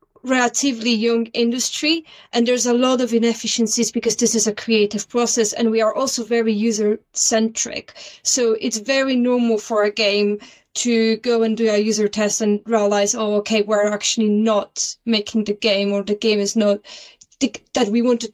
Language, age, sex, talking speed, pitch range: English, 20-39, female, 180 wpm, 210-250 Hz